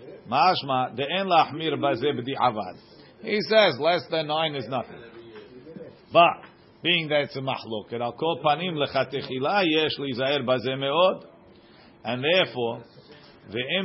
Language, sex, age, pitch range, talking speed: English, male, 40-59, 130-165 Hz, 65 wpm